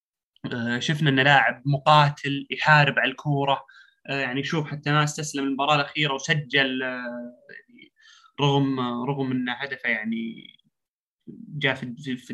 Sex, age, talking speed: male, 20-39, 135 wpm